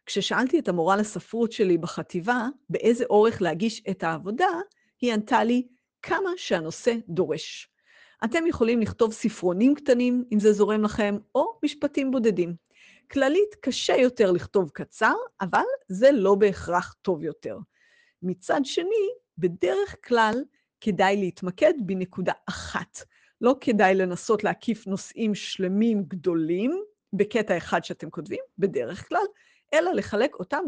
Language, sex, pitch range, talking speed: Hebrew, female, 185-270 Hz, 125 wpm